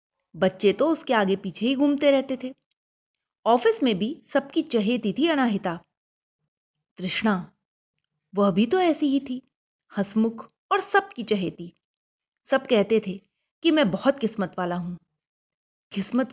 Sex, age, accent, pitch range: female, 30-49, native, 200-280 Hz